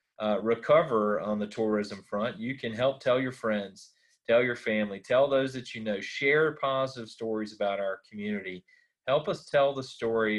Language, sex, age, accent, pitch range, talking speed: English, male, 30-49, American, 105-120 Hz, 180 wpm